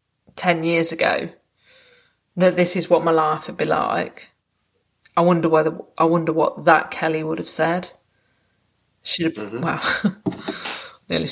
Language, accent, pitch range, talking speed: English, British, 150-170 Hz, 145 wpm